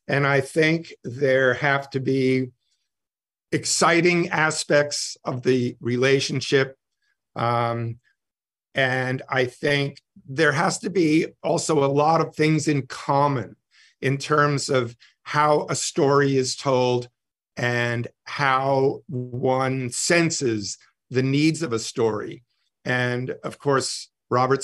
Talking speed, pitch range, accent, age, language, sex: 115 wpm, 125-150 Hz, American, 50-69, Finnish, male